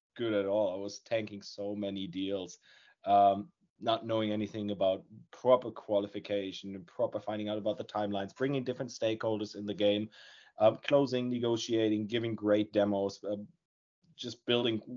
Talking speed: 150 wpm